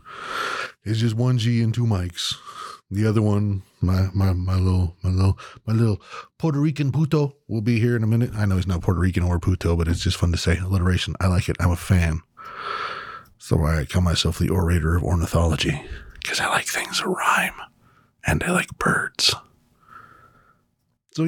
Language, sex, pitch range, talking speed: English, male, 90-130 Hz, 190 wpm